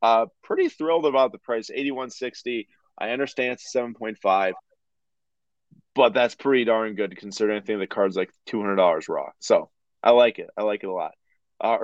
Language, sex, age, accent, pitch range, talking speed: English, male, 20-39, American, 100-125 Hz, 205 wpm